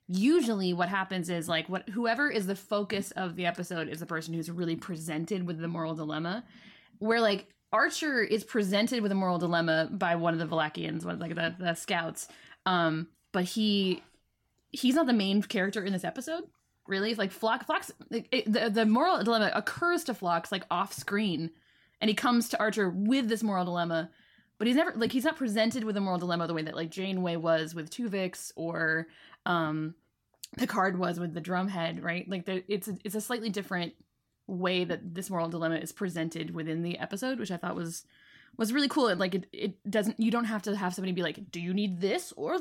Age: 20-39